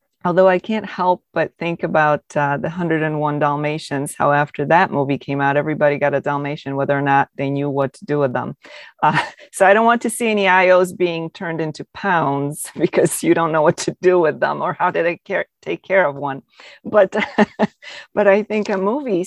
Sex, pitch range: female, 150-200 Hz